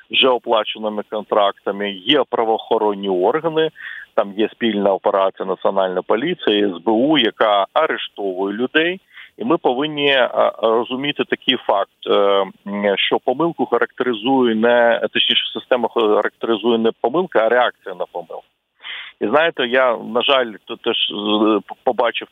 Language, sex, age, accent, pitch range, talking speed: Ukrainian, male, 40-59, native, 100-125 Hz, 115 wpm